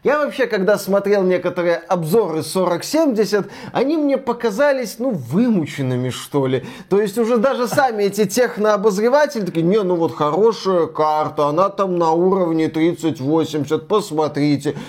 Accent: native